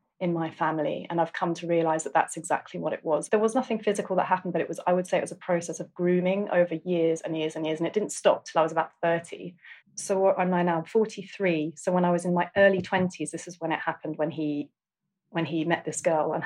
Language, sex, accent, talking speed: English, female, British, 275 wpm